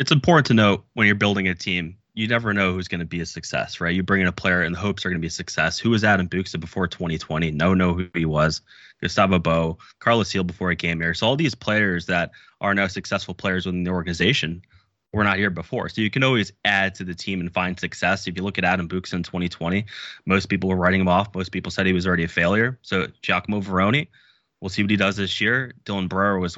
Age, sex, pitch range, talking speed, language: 20-39, male, 90-100 Hz, 255 wpm, English